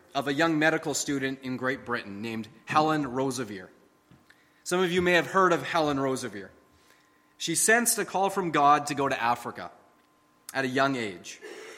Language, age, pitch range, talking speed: English, 30-49, 140-185 Hz, 175 wpm